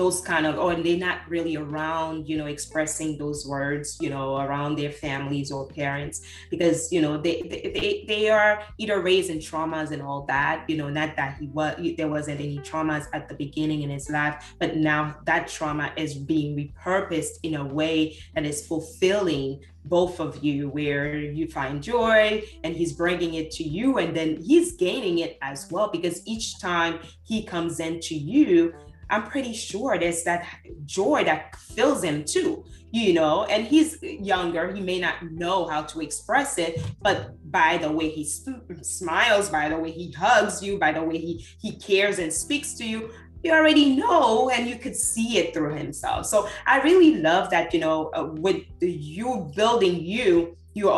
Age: 20-39